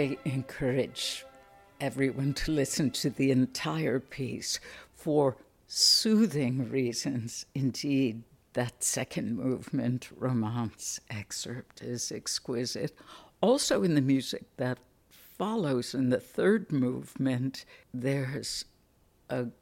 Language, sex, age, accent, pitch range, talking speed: English, female, 60-79, American, 125-145 Hz, 100 wpm